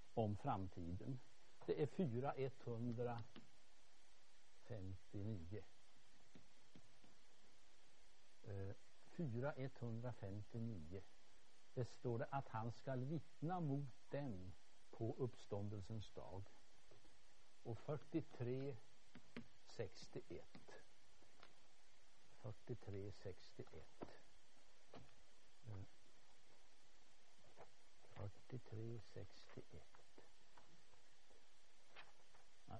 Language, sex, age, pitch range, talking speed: Danish, male, 60-79, 100-140 Hz, 40 wpm